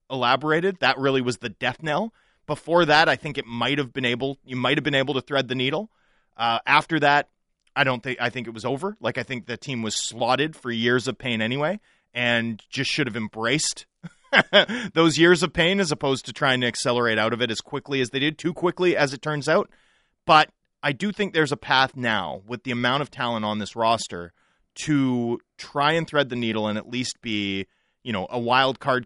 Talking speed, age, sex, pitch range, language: 225 wpm, 30-49, male, 110-145 Hz, English